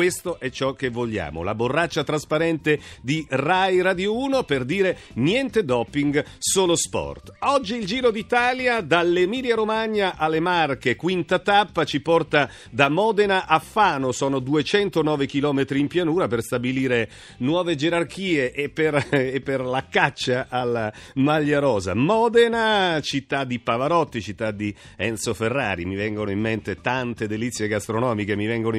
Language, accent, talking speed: Italian, native, 140 wpm